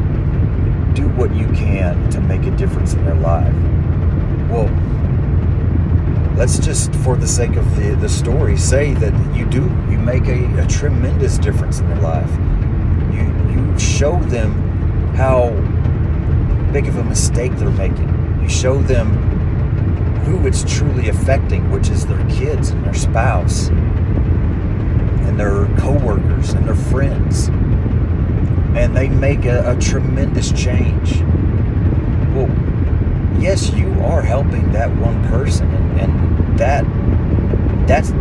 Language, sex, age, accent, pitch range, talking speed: English, male, 40-59, American, 85-110 Hz, 130 wpm